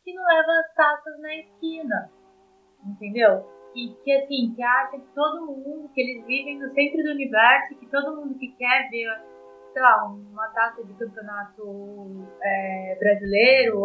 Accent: Brazilian